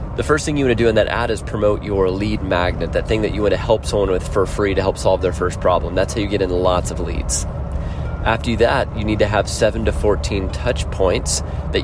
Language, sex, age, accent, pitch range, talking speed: English, male, 30-49, American, 90-115 Hz, 265 wpm